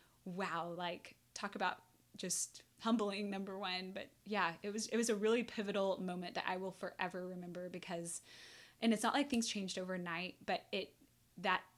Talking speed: 175 wpm